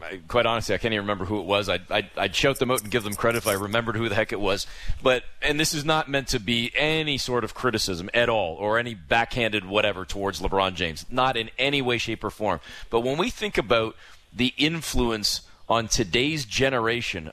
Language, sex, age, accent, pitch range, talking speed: English, male, 30-49, American, 105-140 Hz, 225 wpm